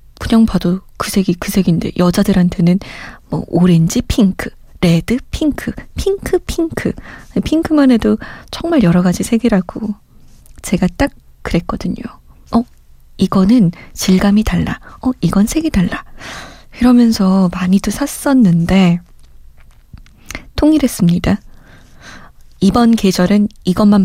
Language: Korean